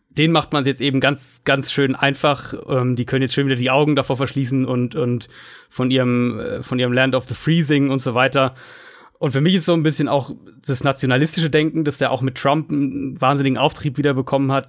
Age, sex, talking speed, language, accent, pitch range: 30-49, male, 220 wpm, German, German, 125-150 Hz